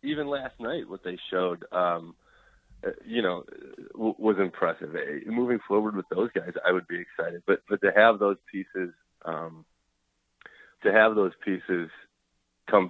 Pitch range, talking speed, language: 85-105 Hz, 160 wpm, English